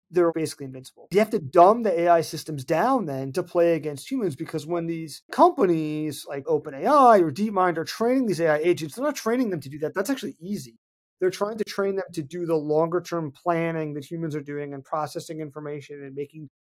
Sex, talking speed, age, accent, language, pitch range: male, 215 wpm, 30-49, American, English, 155-200 Hz